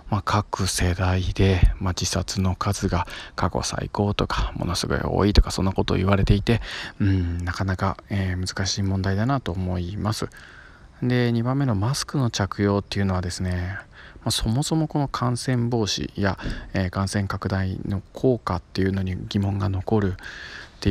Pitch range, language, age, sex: 90-110 Hz, Japanese, 20-39, male